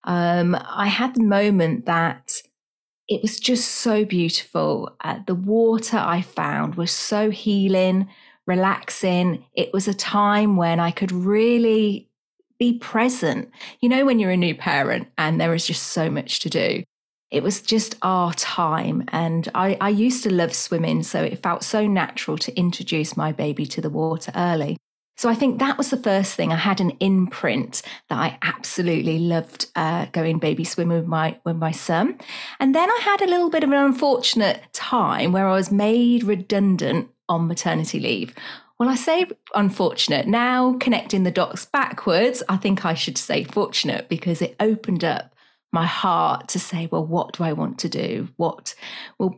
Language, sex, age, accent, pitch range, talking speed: English, female, 40-59, British, 170-225 Hz, 175 wpm